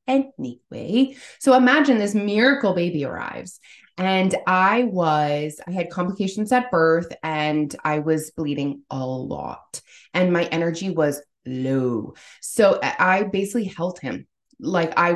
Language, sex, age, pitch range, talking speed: English, female, 20-39, 165-235 Hz, 130 wpm